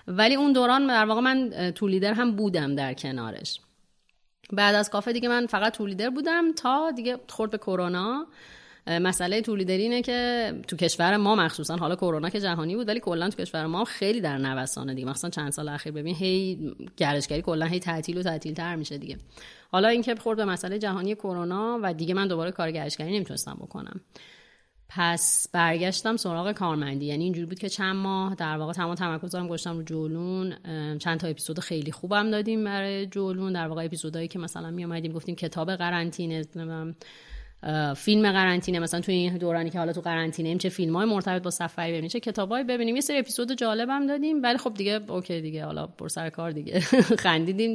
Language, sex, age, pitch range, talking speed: Persian, female, 30-49, 165-215 Hz, 190 wpm